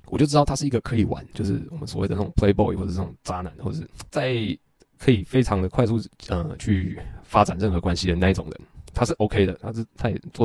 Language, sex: Chinese, male